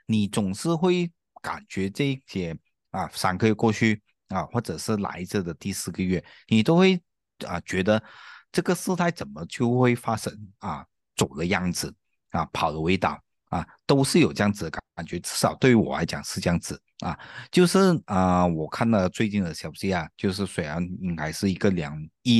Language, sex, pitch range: Chinese, male, 90-120 Hz